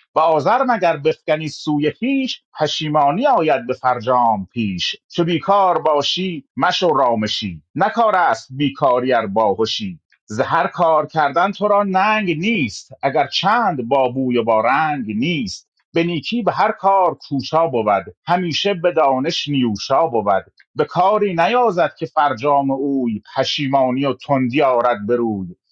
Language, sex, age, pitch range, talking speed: Persian, male, 30-49, 125-180 Hz, 135 wpm